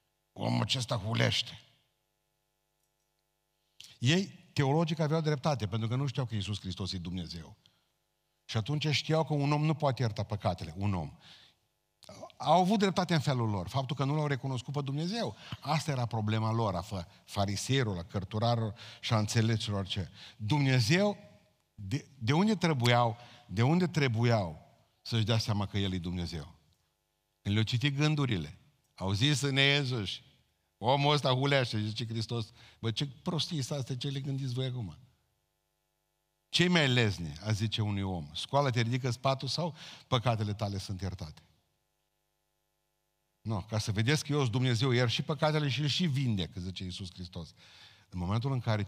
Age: 50-69